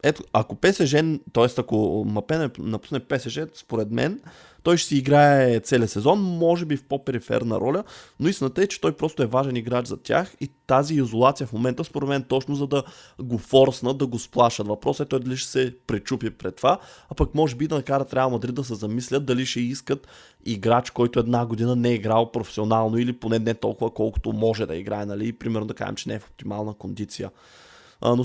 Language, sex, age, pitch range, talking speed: Bulgarian, male, 20-39, 115-135 Hz, 205 wpm